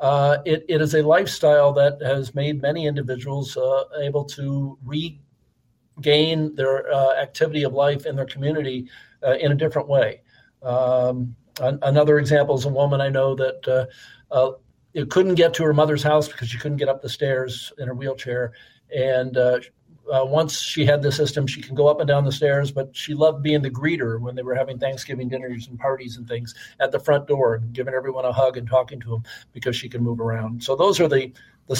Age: 50-69